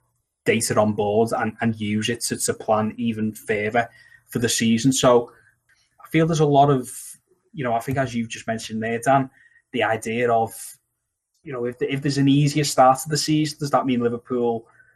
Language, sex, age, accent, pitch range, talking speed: English, male, 20-39, British, 115-135 Hz, 205 wpm